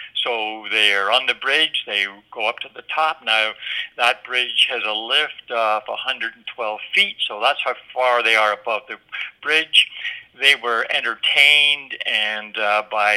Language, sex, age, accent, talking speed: English, male, 60-79, American, 160 wpm